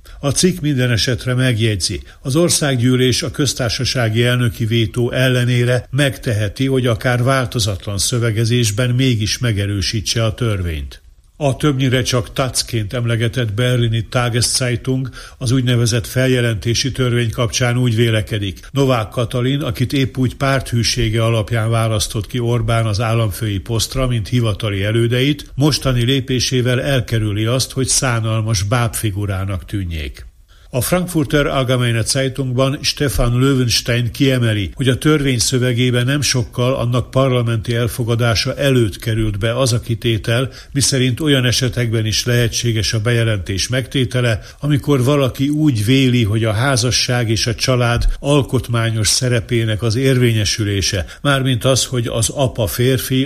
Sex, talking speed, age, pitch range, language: male, 120 wpm, 60-79, 110-130 Hz, Hungarian